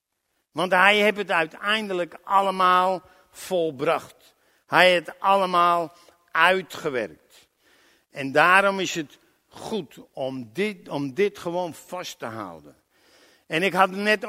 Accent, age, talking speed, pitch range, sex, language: Dutch, 60-79, 120 wpm, 145-180 Hz, male, Dutch